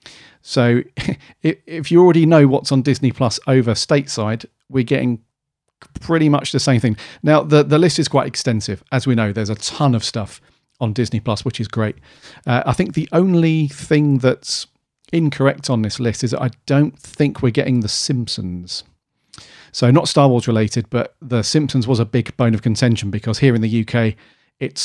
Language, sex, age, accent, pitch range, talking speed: English, male, 40-59, British, 110-140 Hz, 190 wpm